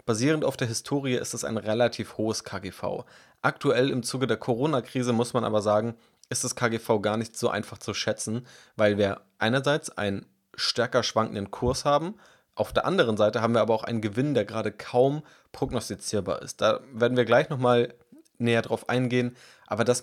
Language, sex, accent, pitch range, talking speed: German, male, German, 105-125 Hz, 185 wpm